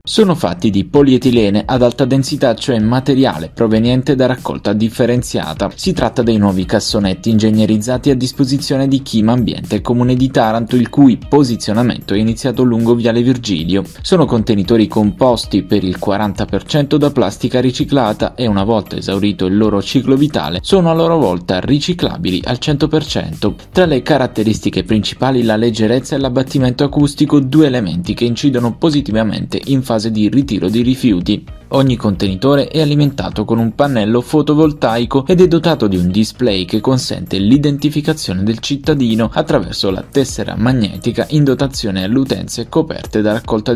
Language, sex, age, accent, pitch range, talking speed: Italian, male, 20-39, native, 105-140 Hz, 150 wpm